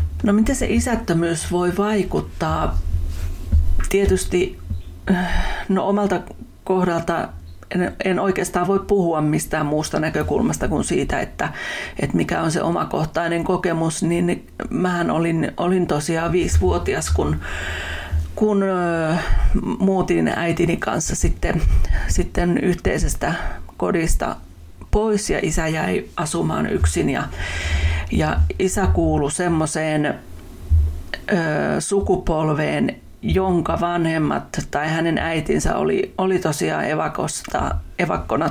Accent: native